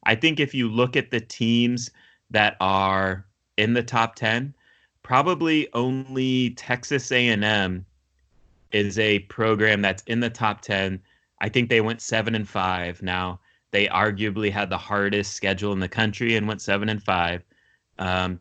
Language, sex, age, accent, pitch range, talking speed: English, male, 30-49, American, 100-115 Hz, 160 wpm